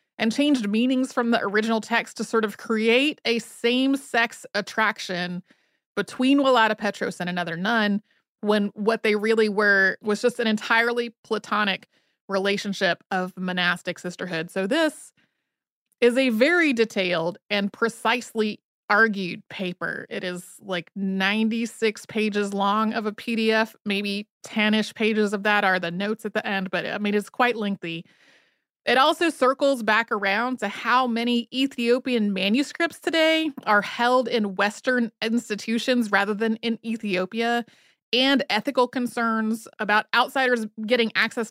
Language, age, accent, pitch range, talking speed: English, 30-49, American, 195-240 Hz, 140 wpm